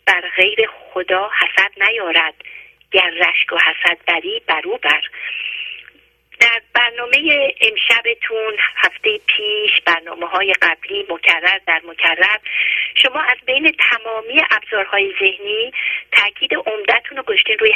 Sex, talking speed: female, 110 wpm